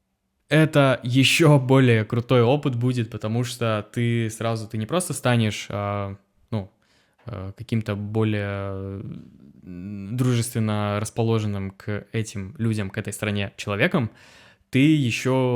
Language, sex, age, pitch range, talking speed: Russian, male, 20-39, 105-130 Hz, 110 wpm